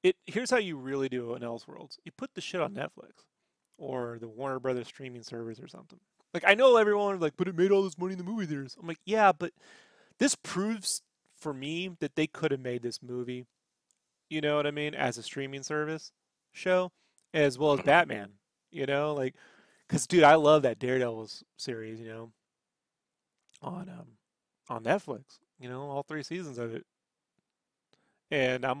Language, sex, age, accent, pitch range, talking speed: English, male, 30-49, American, 120-165 Hz, 195 wpm